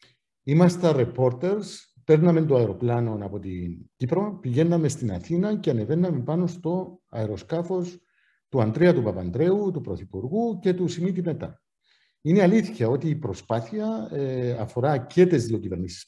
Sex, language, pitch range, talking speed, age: male, Greek, 110-175 Hz, 135 wpm, 50-69